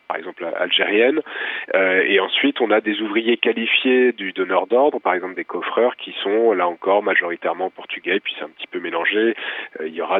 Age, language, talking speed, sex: 30-49, French, 200 wpm, male